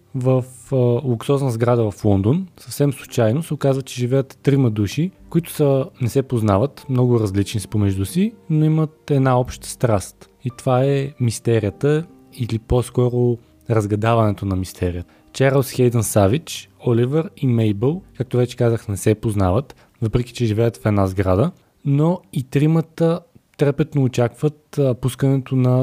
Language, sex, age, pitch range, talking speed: Bulgarian, male, 20-39, 115-140 Hz, 145 wpm